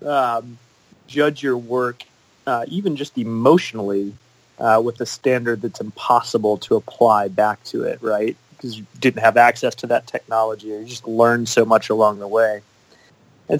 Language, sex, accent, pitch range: English, male, American, 110-135 Hz